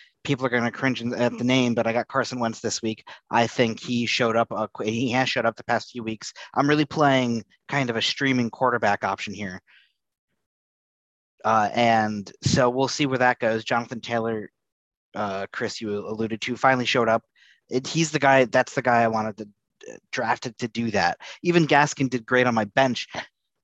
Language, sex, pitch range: English, male, 110-130 Hz